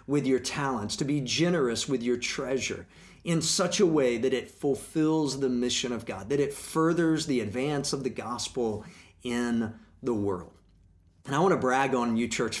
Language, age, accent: English, 40-59, American